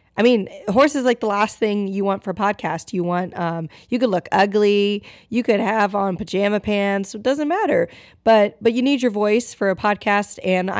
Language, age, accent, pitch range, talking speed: English, 20-39, American, 185-230 Hz, 220 wpm